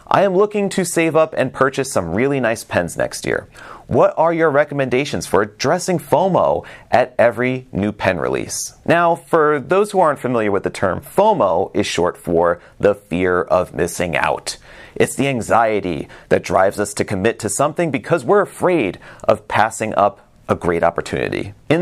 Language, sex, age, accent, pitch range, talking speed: English, male, 30-49, American, 100-170 Hz, 175 wpm